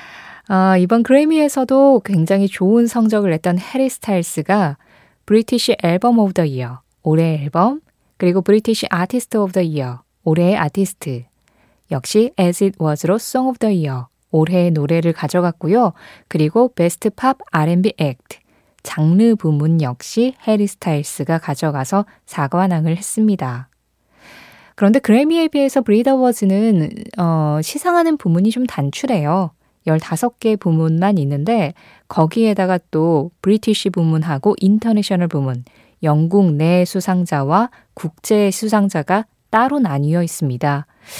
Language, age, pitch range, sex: Korean, 20-39, 160-230 Hz, female